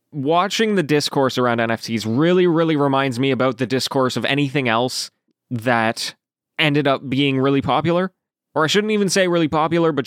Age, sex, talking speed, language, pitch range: 20-39, male, 175 wpm, English, 120-160 Hz